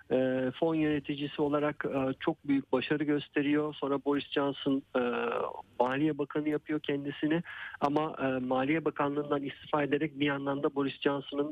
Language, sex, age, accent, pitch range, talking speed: Turkish, male, 50-69, native, 125-150 Hz, 145 wpm